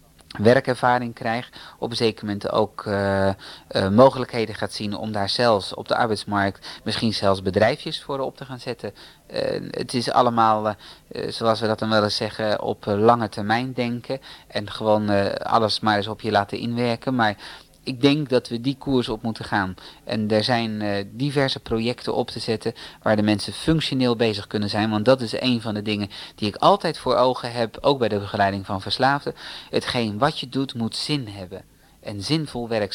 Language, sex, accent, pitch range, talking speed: Dutch, male, Dutch, 105-125 Hz, 195 wpm